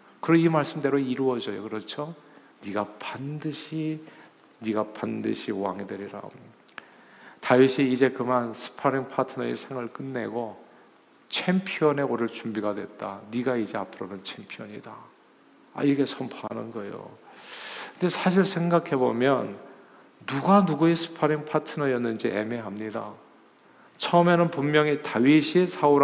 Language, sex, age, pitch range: Korean, male, 40-59, 125-170 Hz